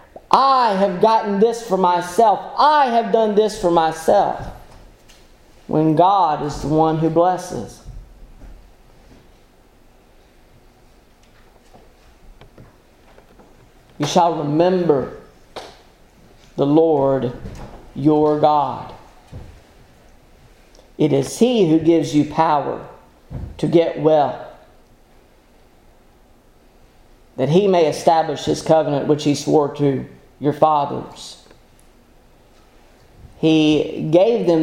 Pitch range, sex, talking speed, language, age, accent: 140-175 Hz, male, 90 wpm, English, 40-59, American